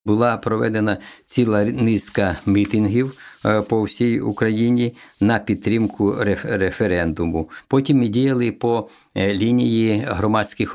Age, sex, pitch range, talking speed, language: 50-69, male, 95-110 Hz, 95 wpm, Ukrainian